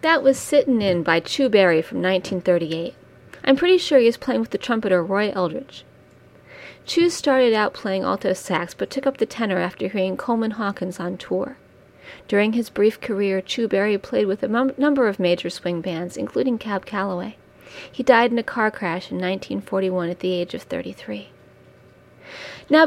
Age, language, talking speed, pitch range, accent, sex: 40-59, English, 180 wpm, 190-255 Hz, American, female